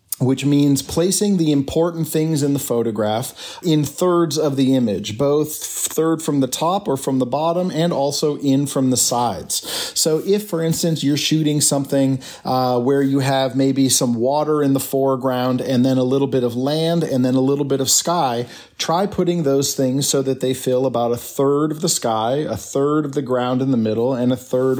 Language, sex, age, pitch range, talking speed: Slovak, male, 40-59, 130-160 Hz, 205 wpm